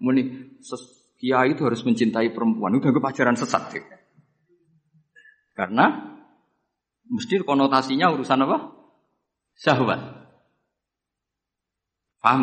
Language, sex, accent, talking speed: Indonesian, male, native, 85 wpm